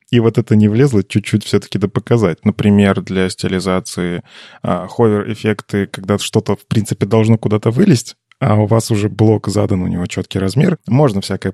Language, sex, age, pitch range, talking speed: Russian, male, 20-39, 100-125 Hz, 170 wpm